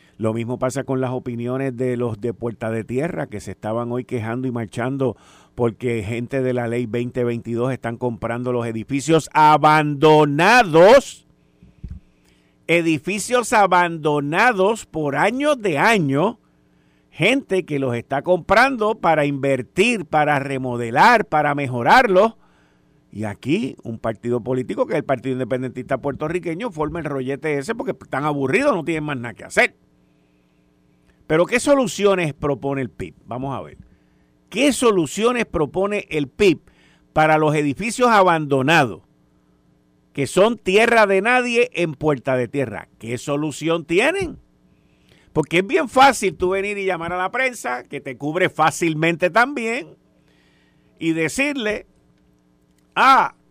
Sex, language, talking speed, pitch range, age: male, Spanish, 135 wpm, 120-185 Hz, 50-69